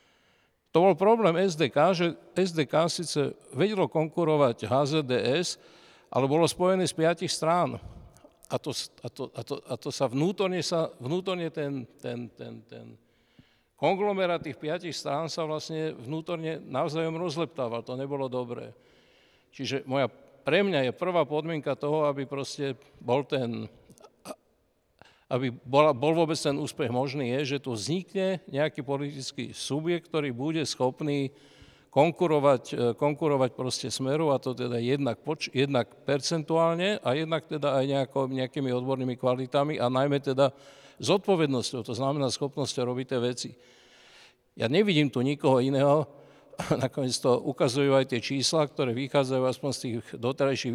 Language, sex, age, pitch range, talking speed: Slovak, male, 60-79, 130-160 Hz, 140 wpm